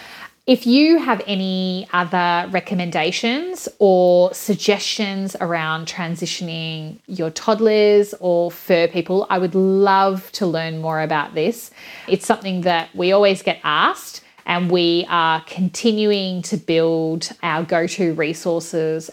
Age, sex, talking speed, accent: 30-49, female, 120 wpm, Australian